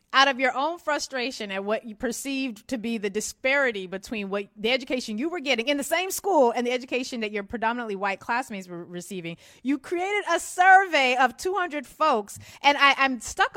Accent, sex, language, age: American, female, English, 30-49